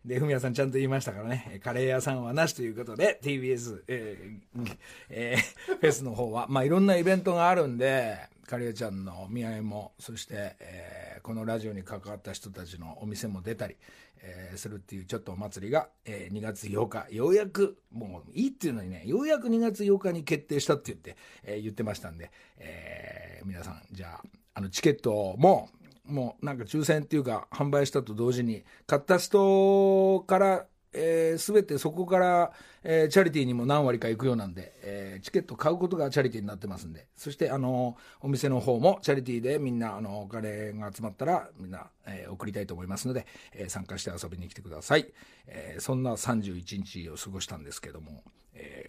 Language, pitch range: Japanese, 100-145 Hz